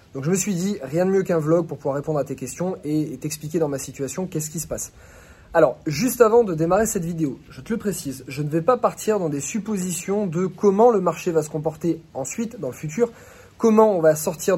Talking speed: 245 wpm